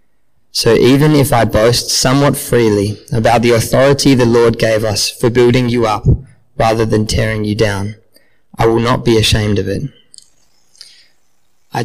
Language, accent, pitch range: English, Australian, 110-130 Hz